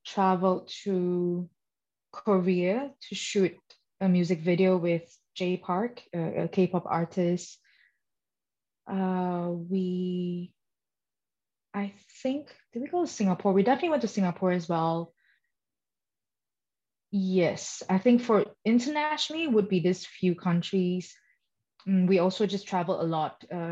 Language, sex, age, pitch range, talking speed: English, female, 20-39, 170-200 Hz, 120 wpm